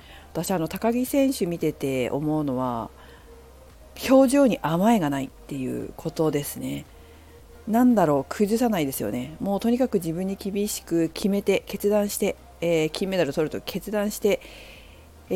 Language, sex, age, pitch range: Japanese, female, 40-59, 145-220 Hz